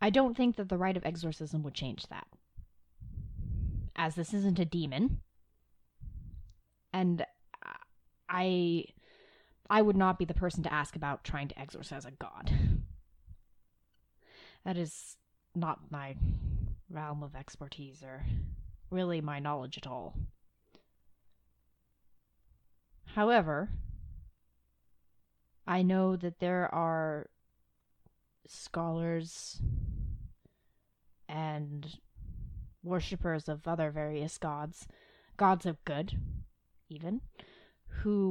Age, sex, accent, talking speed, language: 20-39, female, American, 100 wpm, English